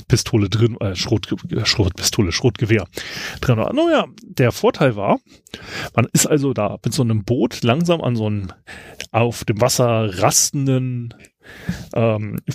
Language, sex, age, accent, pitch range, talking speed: German, male, 30-49, German, 120-160 Hz, 130 wpm